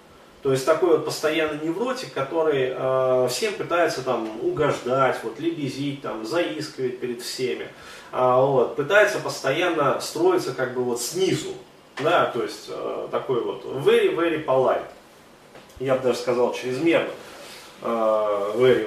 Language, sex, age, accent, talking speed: Russian, male, 30-49, native, 125 wpm